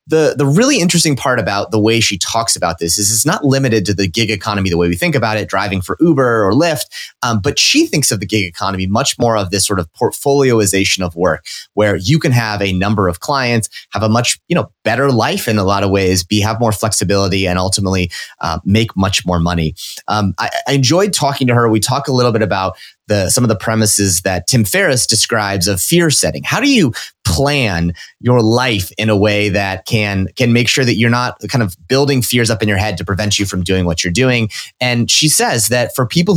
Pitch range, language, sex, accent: 100-130 Hz, English, male, American